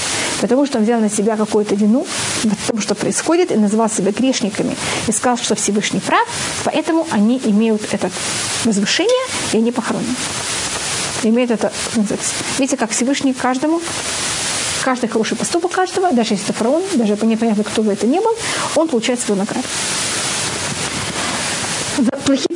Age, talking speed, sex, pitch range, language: 30-49, 145 wpm, female, 215-265 Hz, Russian